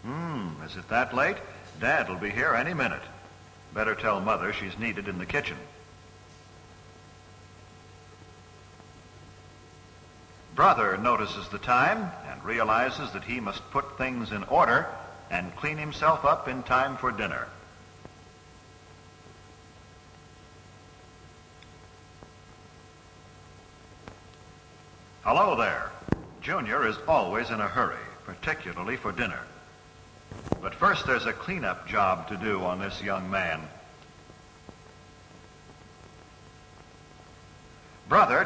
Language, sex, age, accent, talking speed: English, male, 60-79, American, 100 wpm